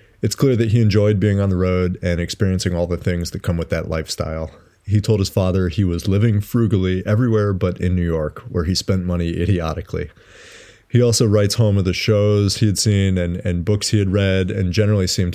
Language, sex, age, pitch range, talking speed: English, male, 30-49, 85-105 Hz, 220 wpm